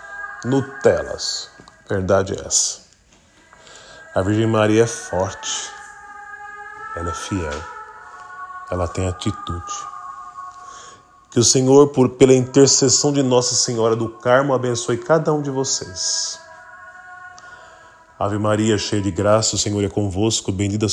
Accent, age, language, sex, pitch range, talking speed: Brazilian, 20-39, Portuguese, male, 95-145 Hz, 120 wpm